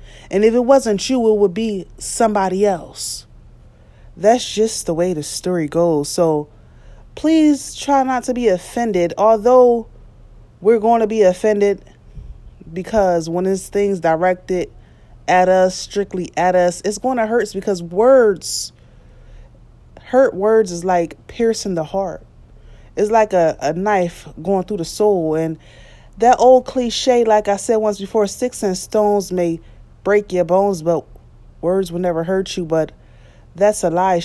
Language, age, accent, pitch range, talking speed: English, 20-39, American, 160-210 Hz, 155 wpm